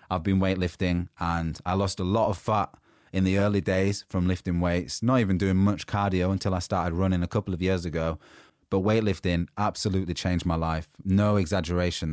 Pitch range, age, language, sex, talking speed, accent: 90-105 Hz, 20-39, English, male, 195 wpm, British